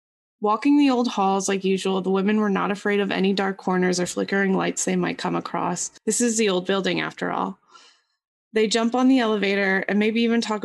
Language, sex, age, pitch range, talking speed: English, female, 20-39, 195-230 Hz, 215 wpm